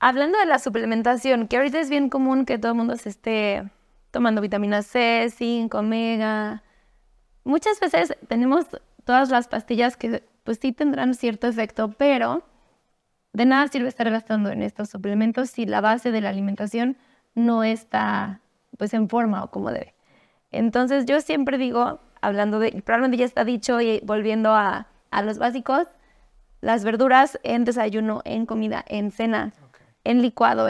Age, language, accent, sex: 20-39, Spanish, Mexican, female